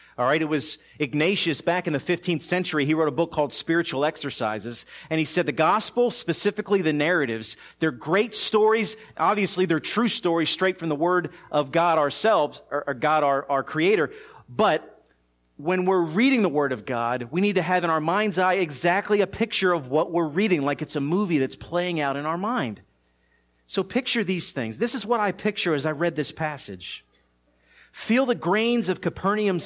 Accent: American